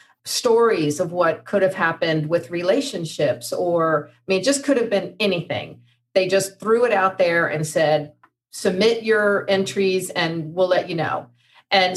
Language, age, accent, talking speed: English, 40-59, American, 170 wpm